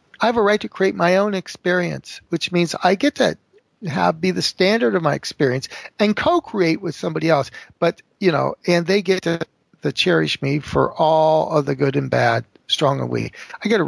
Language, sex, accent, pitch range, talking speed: English, male, American, 140-190 Hz, 210 wpm